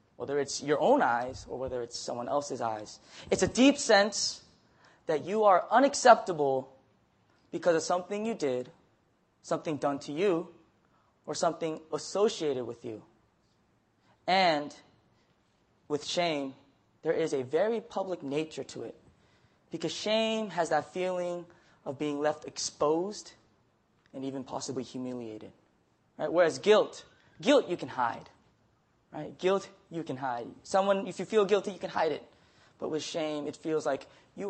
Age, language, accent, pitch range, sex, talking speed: 20-39, English, American, 130-185 Hz, male, 145 wpm